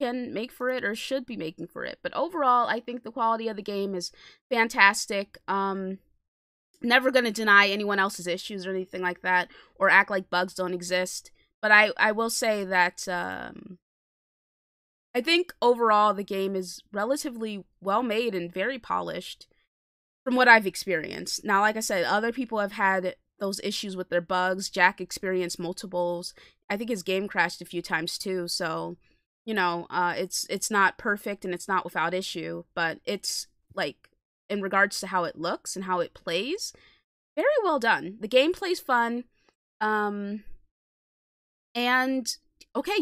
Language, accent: English, American